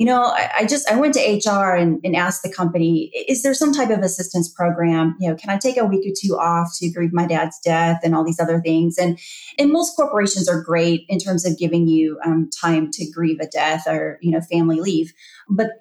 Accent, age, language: American, 30-49, English